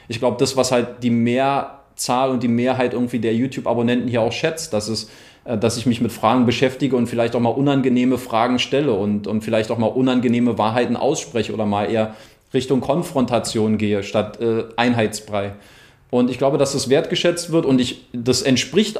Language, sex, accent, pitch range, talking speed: German, male, German, 110-130 Hz, 180 wpm